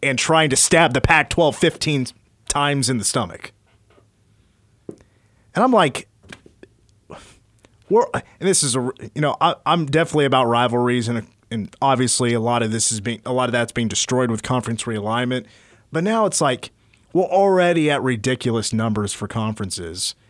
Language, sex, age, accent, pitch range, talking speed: English, male, 30-49, American, 115-150 Hz, 165 wpm